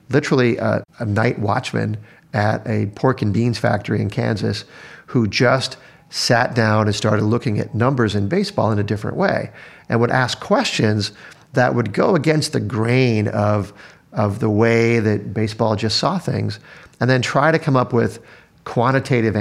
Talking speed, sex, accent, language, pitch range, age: 170 wpm, male, American, English, 105-130 Hz, 40-59